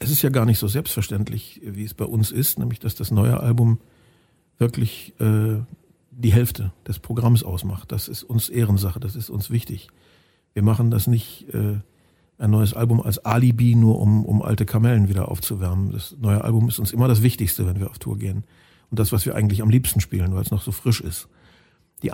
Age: 50-69